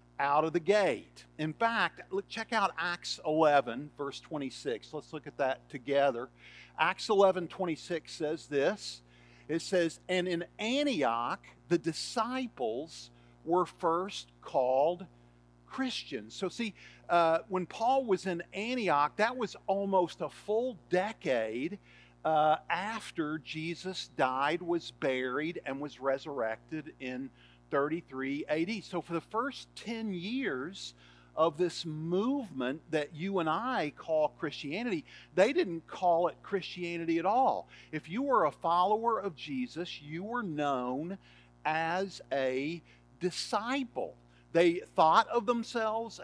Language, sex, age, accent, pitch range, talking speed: English, male, 50-69, American, 140-195 Hz, 125 wpm